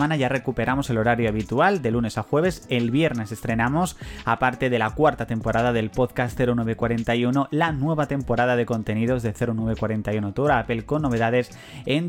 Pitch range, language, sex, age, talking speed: 120-150 Hz, Spanish, male, 30-49, 165 wpm